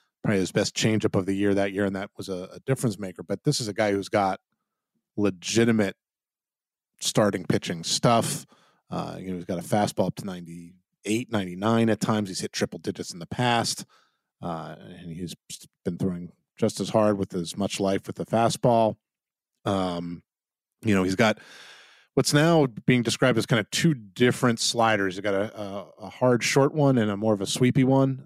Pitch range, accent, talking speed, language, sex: 95-120 Hz, American, 195 wpm, English, male